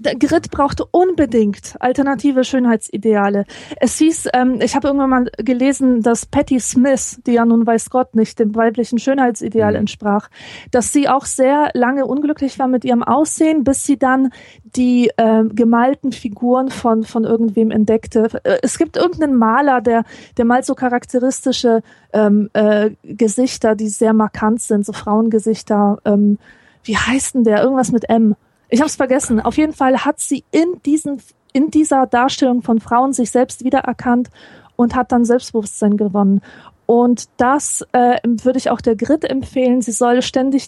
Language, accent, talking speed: German, German, 160 wpm